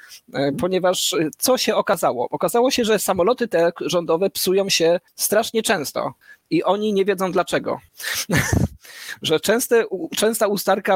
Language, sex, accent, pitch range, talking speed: Polish, male, native, 160-200 Hz, 125 wpm